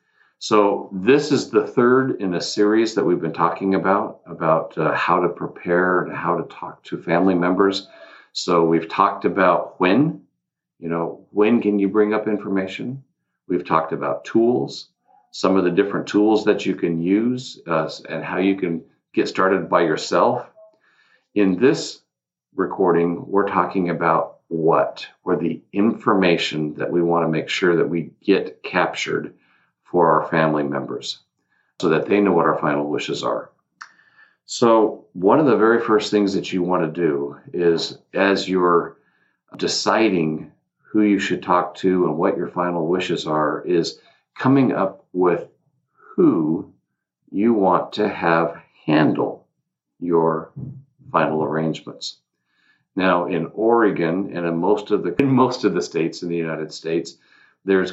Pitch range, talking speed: 85-105 Hz, 155 wpm